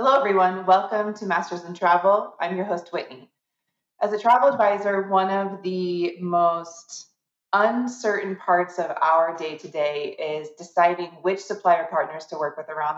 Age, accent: 30-49, American